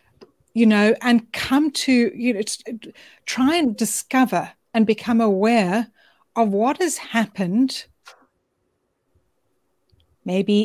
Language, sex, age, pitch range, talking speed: English, female, 60-79, 210-260 Hz, 105 wpm